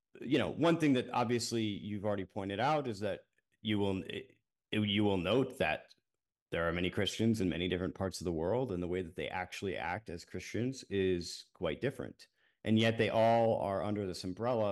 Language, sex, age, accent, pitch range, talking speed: English, male, 30-49, American, 95-120 Hz, 210 wpm